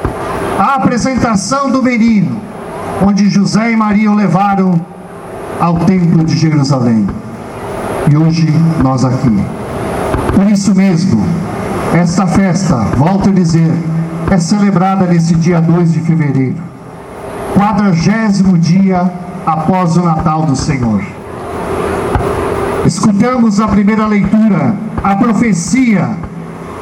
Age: 60-79